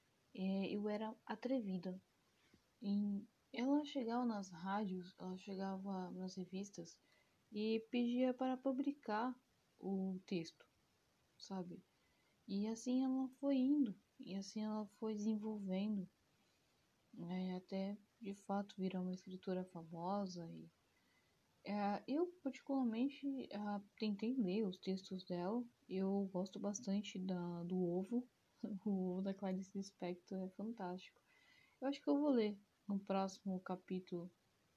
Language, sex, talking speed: Portuguese, female, 110 wpm